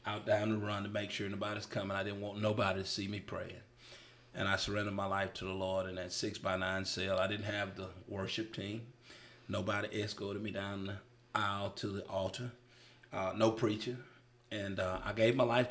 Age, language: 30-49, English